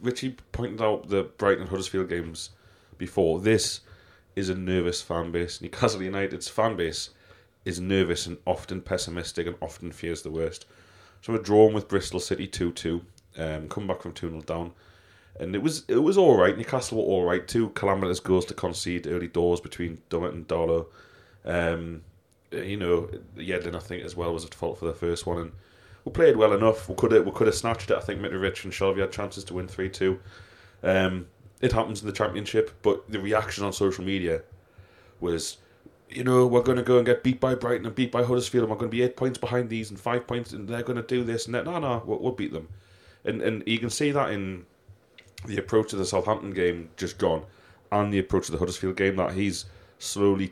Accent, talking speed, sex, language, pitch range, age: British, 215 wpm, male, English, 90-110 Hz, 30-49